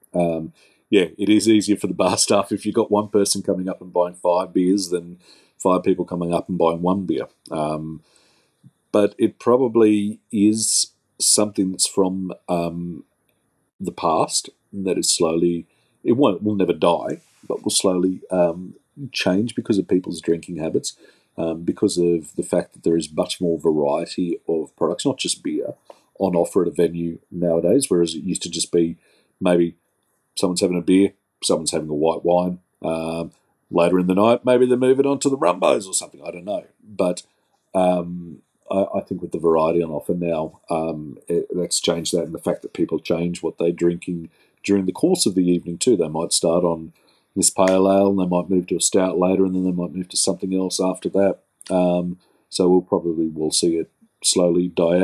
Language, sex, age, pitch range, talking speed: English, male, 40-59, 85-95 Hz, 195 wpm